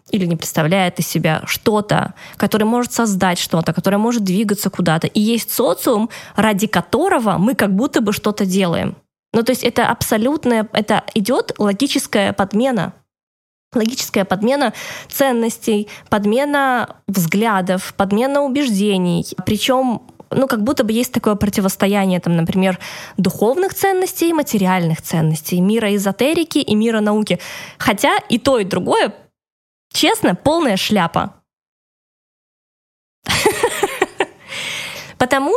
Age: 20-39